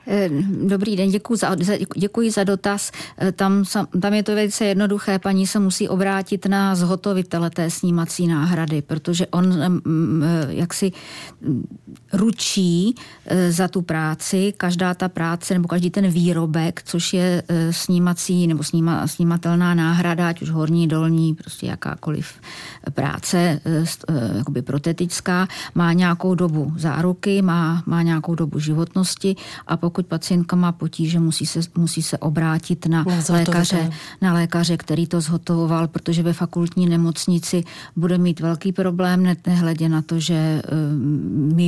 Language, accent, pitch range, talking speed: Czech, native, 160-180 Hz, 125 wpm